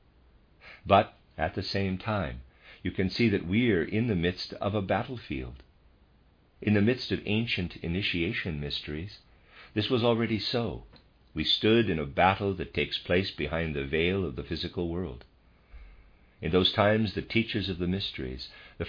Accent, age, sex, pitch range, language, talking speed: American, 50-69, male, 75-100 Hz, English, 165 wpm